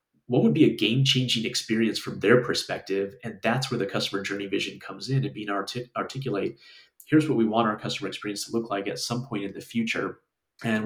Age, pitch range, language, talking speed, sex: 30-49, 100-120 Hz, English, 210 wpm, male